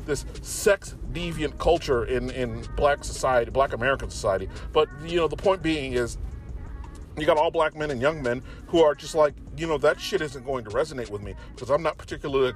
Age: 40-59